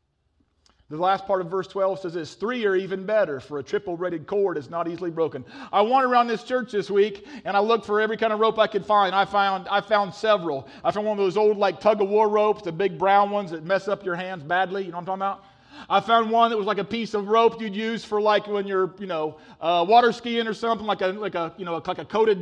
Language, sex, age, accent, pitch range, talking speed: English, male, 40-59, American, 170-230 Hz, 275 wpm